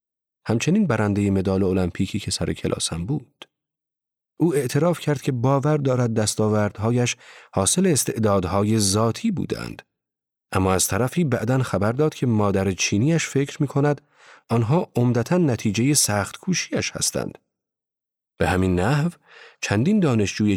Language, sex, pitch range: Persian, male, 100-155 Hz